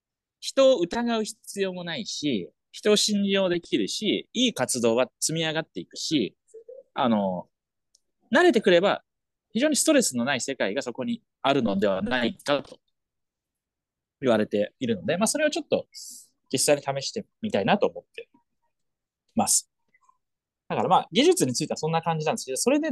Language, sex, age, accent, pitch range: Japanese, male, 30-49, native, 180-285 Hz